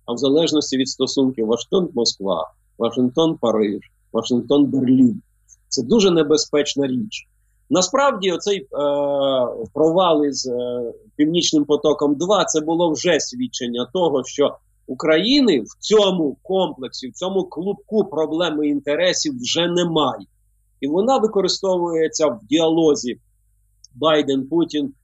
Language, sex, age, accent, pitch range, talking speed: Ukrainian, male, 50-69, native, 125-180 Hz, 100 wpm